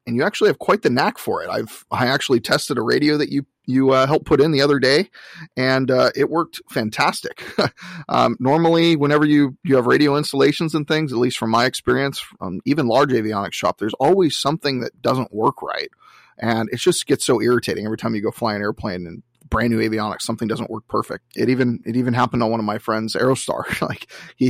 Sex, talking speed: male, 225 wpm